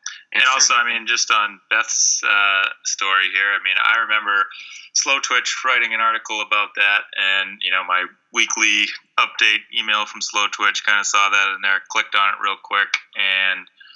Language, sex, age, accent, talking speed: English, male, 20-39, American, 185 wpm